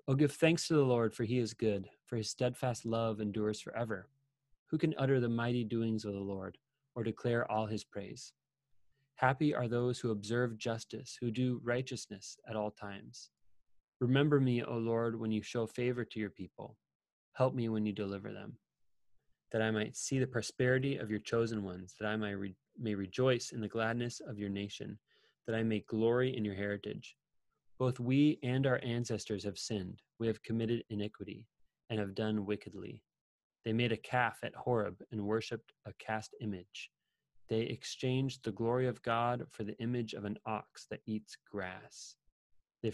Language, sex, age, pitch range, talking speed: English, male, 20-39, 105-120 Hz, 180 wpm